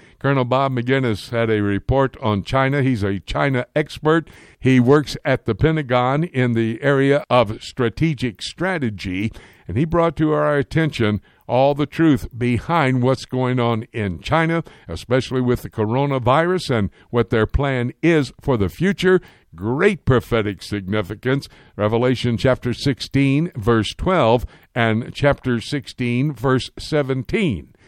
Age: 60-79